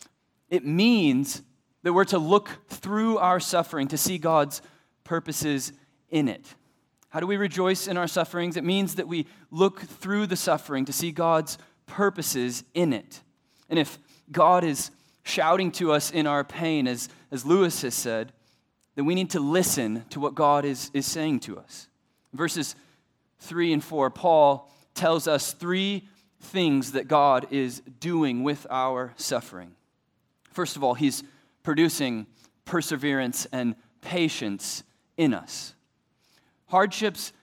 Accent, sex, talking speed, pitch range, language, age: American, male, 145 wpm, 140-185 Hz, English, 20-39